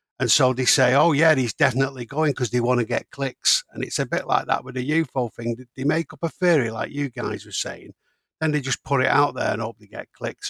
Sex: male